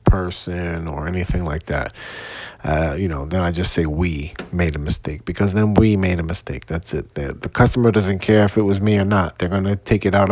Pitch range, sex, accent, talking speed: 90-110 Hz, male, American, 235 wpm